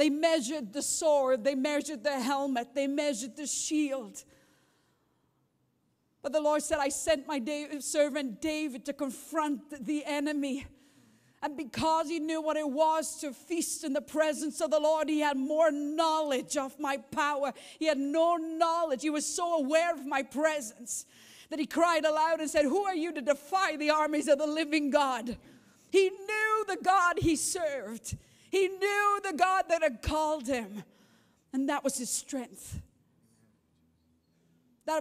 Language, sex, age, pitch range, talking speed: English, female, 50-69, 250-310 Hz, 165 wpm